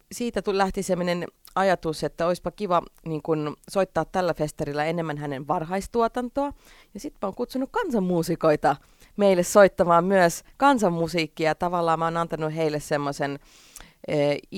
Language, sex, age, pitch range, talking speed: Finnish, female, 30-49, 150-190 Hz, 130 wpm